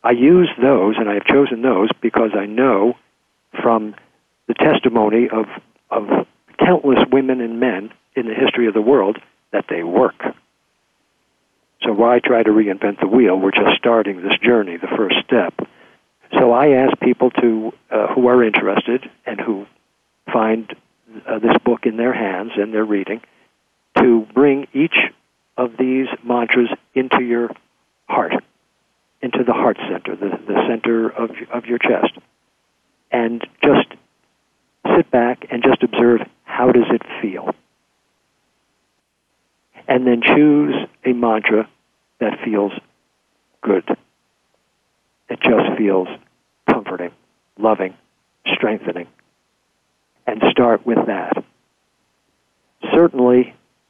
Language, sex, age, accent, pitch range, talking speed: English, male, 50-69, American, 110-125 Hz, 130 wpm